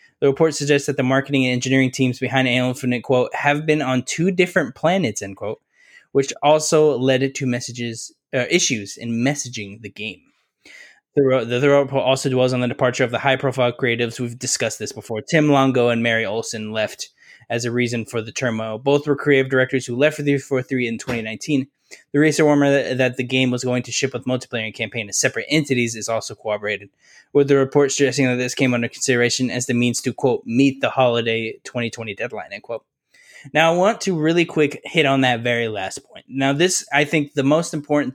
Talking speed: 210 wpm